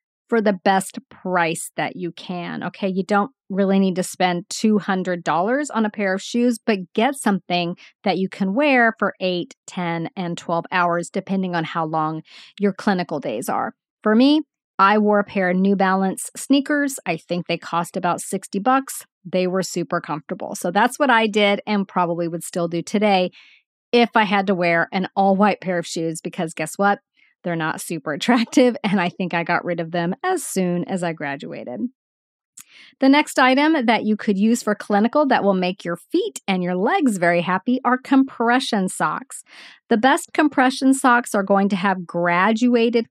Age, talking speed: 40-59, 185 wpm